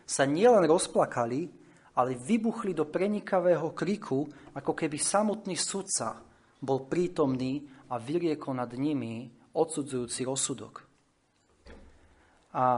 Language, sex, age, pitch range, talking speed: Slovak, male, 30-49, 125-160 Hz, 100 wpm